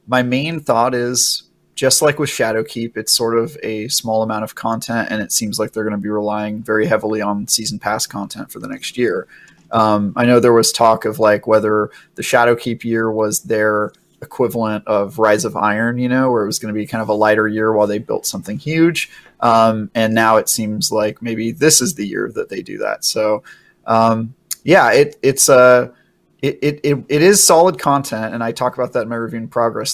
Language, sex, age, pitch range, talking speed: English, male, 30-49, 110-125 Hz, 225 wpm